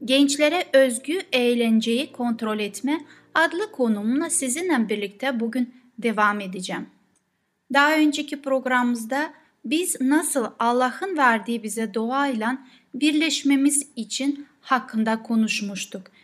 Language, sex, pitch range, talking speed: Turkish, female, 215-290 Hz, 90 wpm